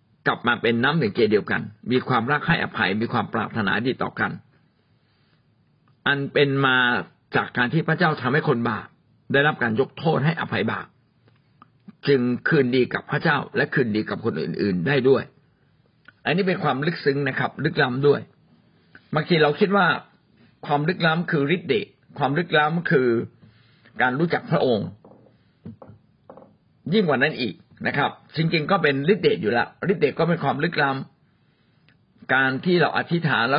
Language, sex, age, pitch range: Thai, male, 60-79, 140-175 Hz